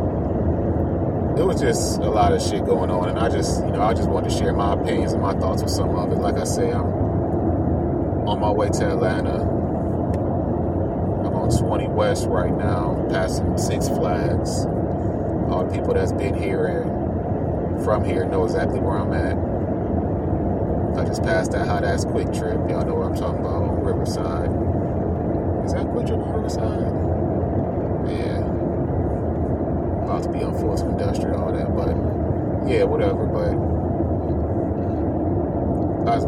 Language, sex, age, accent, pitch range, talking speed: English, male, 30-49, American, 90-110 Hz, 160 wpm